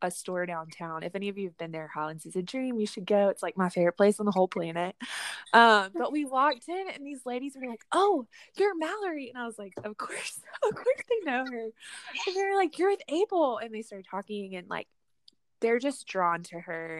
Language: English